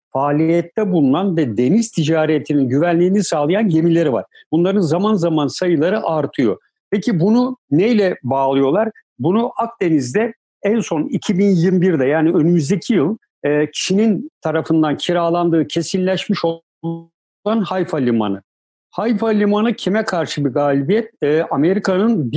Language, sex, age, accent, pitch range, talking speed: Turkish, male, 60-79, native, 155-205 Hz, 105 wpm